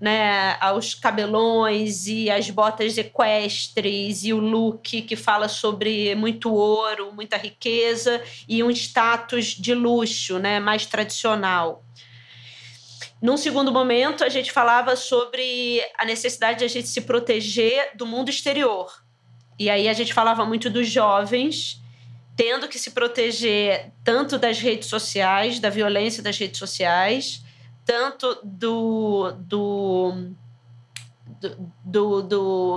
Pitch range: 195-235 Hz